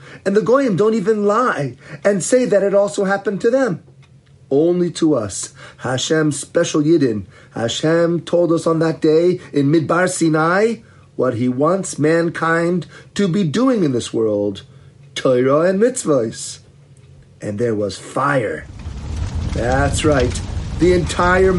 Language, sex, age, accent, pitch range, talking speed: English, male, 40-59, American, 130-185 Hz, 140 wpm